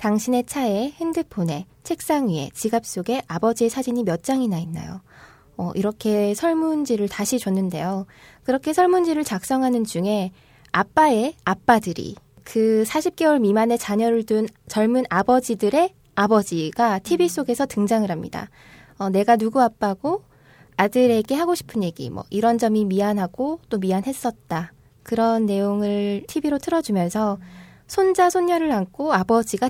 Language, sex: Korean, female